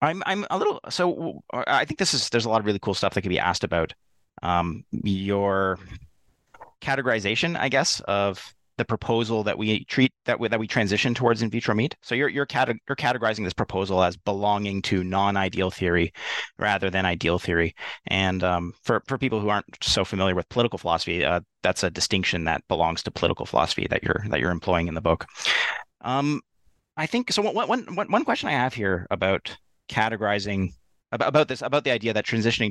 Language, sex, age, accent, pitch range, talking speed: English, male, 30-49, American, 90-115 Hz, 200 wpm